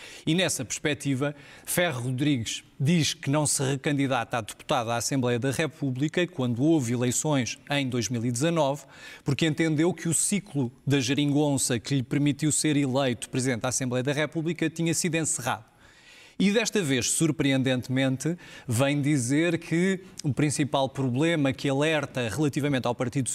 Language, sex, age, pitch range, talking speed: Portuguese, male, 20-39, 135-160 Hz, 145 wpm